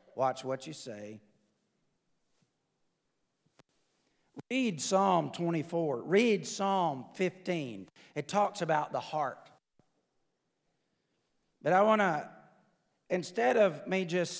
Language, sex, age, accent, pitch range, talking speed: English, male, 40-59, American, 145-200 Hz, 95 wpm